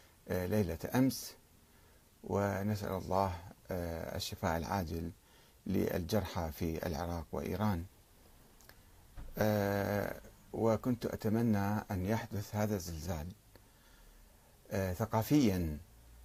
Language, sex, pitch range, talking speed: Arabic, male, 90-115 Hz, 65 wpm